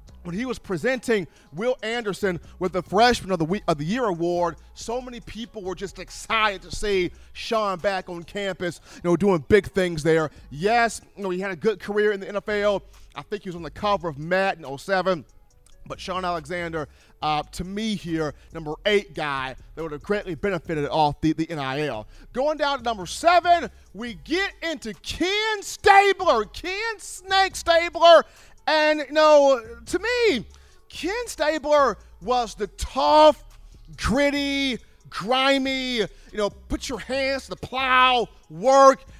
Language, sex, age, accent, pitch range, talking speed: English, male, 40-59, American, 180-280 Hz, 165 wpm